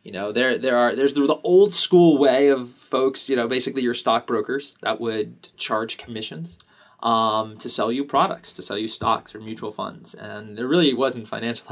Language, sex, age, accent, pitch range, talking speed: English, male, 20-39, American, 115-145 Hz, 195 wpm